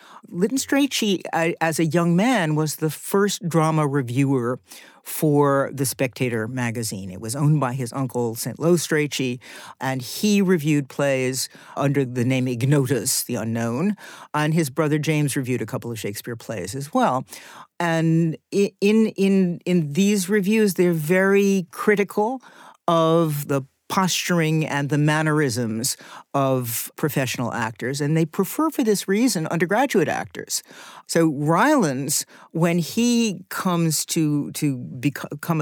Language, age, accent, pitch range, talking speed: English, 50-69, American, 135-190 Hz, 135 wpm